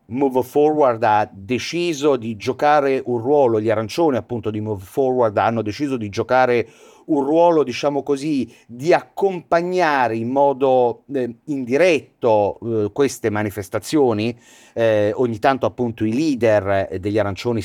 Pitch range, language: 105-140 Hz, Italian